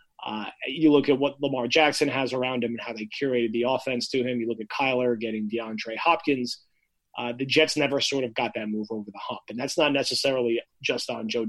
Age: 30-49